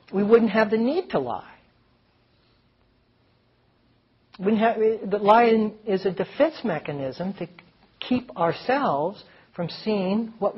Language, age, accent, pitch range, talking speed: English, 60-79, American, 160-220 Hz, 110 wpm